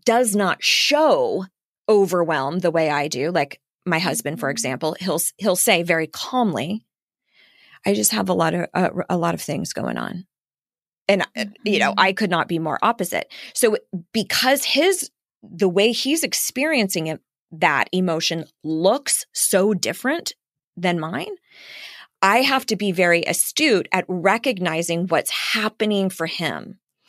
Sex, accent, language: female, American, English